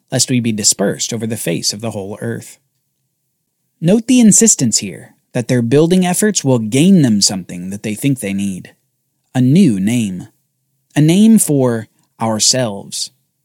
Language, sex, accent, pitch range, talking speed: English, male, American, 115-170 Hz, 155 wpm